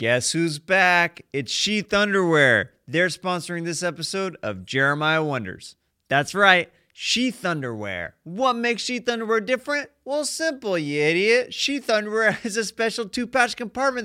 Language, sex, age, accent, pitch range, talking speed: English, male, 30-49, American, 145-200 Hz, 140 wpm